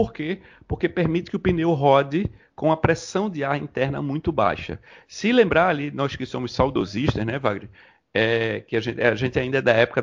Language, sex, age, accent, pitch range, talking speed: Portuguese, male, 40-59, Brazilian, 130-175 Hz, 195 wpm